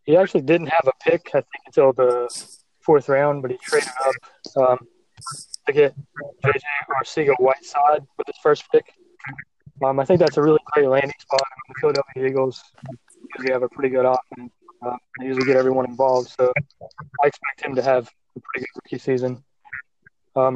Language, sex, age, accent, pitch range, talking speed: English, male, 20-39, American, 130-145 Hz, 185 wpm